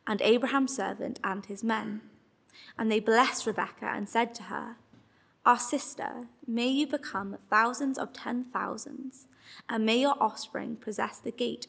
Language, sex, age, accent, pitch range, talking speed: English, female, 20-39, British, 210-255 Hz, 155 wpm